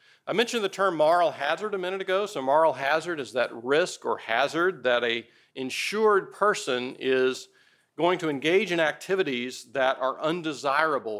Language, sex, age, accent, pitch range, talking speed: English, male, 40-59, American, 110-160 Hz, 160 wpm